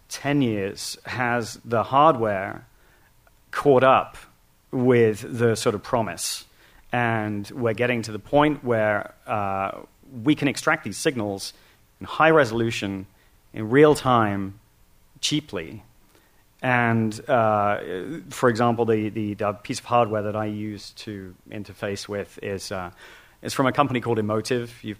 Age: 30-49